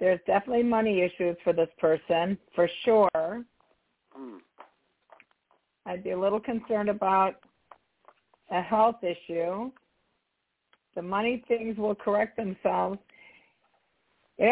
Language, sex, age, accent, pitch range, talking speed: English, female, 50-69, American, 185-225 Hz, 105 wpm